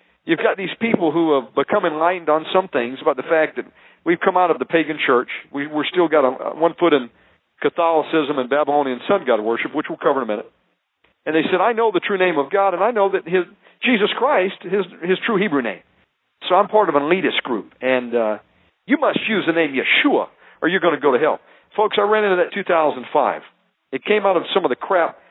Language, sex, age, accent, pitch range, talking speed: English, male, 50-69, American, 140-185 Hz, 235 wpm